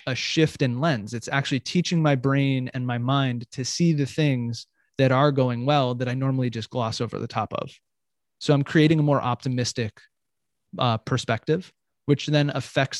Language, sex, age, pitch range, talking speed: English, male, 20-39, 120-140 Hz, 185 wpm